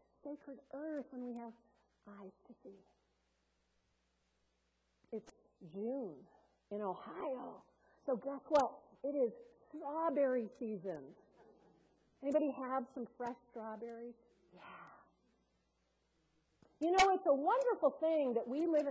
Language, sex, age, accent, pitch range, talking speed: English, female, 50-69, American, 215-300 Hz, 110 wpm